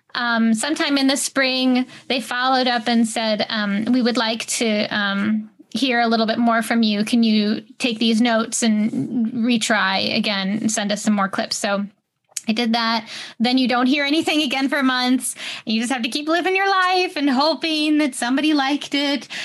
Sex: female